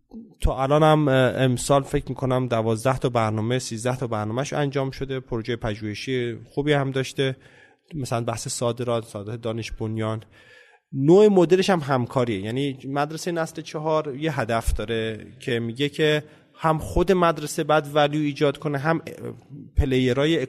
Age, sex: 30-49, male